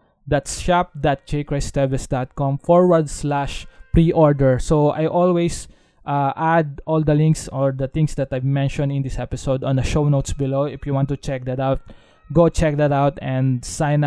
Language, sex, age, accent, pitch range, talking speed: English, male, 20-39, Filipino, 135-155 Hz, 170 wpm